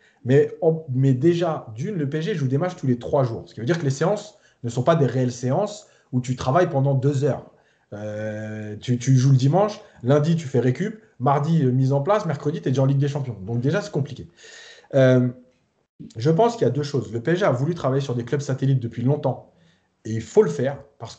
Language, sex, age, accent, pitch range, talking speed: French, male, 30-49, French, 125-155 Hz, 235 wpm